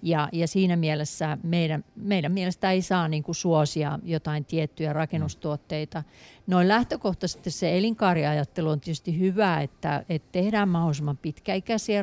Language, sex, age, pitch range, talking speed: Finnish, female, 50-69, 155-180 Hz, 130 wpm